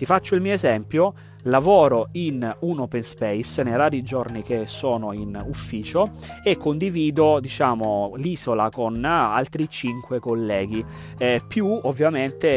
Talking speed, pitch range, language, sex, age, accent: 135 wpm, 120-160 Hz, Italian, male, 30-49, native